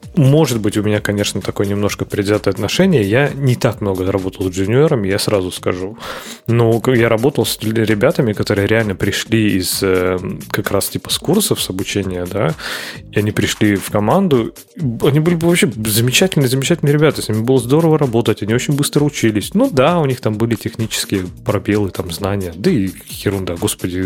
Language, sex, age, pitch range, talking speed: Russian, male, 20-39, 100-135 Hz, 175 wpm